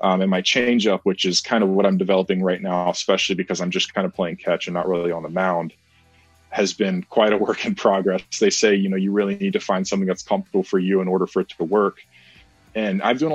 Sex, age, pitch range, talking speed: male, 20-39, 95-110 Hz, 255 wpm